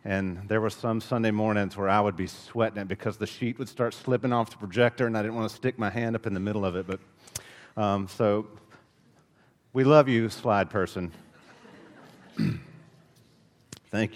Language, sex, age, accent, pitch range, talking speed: English, male, 40-59, American, 110-145 Hz, 185 wpm